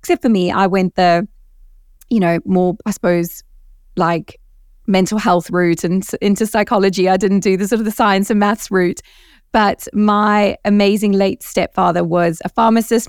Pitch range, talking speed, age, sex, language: 180-210 Hz, 170 wpm, 20-39, female, English